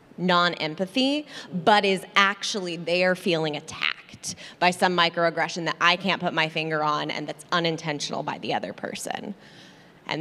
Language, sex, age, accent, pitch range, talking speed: English, female, 20-39, American, 160-195 Hz, 145 wpm